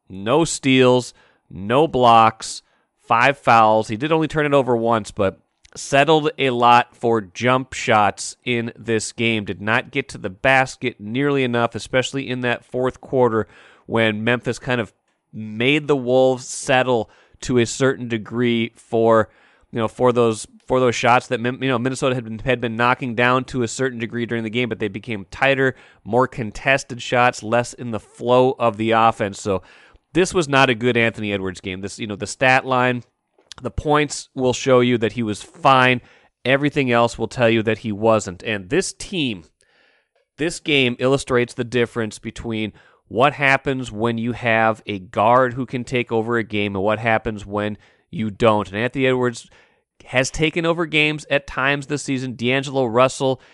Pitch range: 115-130 Hz